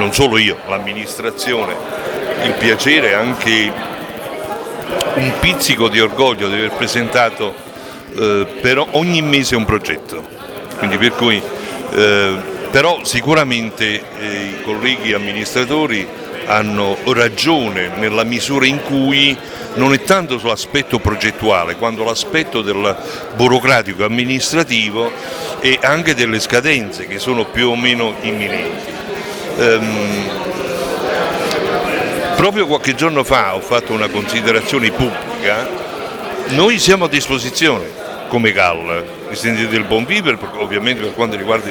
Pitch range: 105-135 Hz